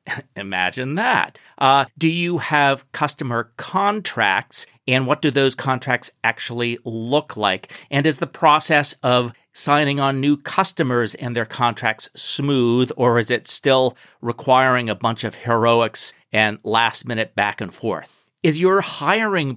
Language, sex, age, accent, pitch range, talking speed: English, male, 40-59, American, 120-150 Hz, 145 wpm